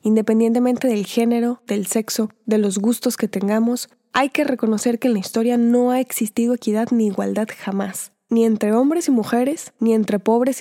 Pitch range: 210-245 Hz